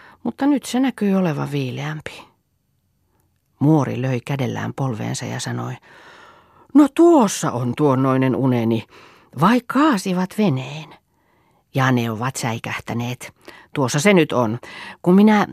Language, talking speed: Finnish, 120 wpm